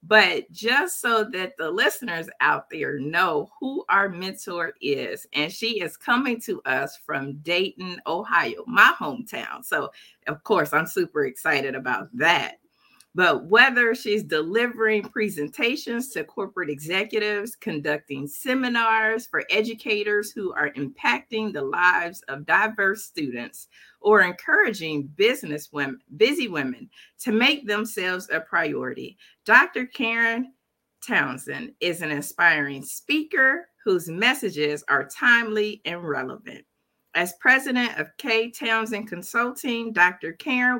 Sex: female